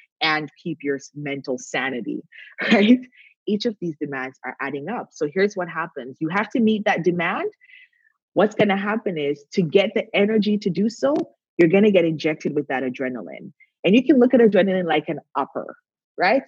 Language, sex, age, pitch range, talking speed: English, female, 20-39, 160-235 Hz, 195 wpm